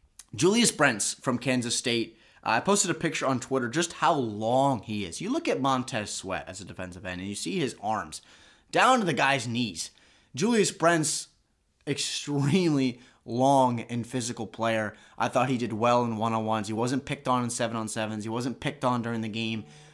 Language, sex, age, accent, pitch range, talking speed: English, male, 20-39, American, 115-140 Hz, 190 wpm